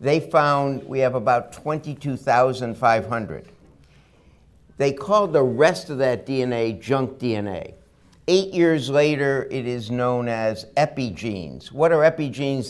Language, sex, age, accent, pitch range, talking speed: English, male, 60-79, American, 125-155 Hz, 125 wpm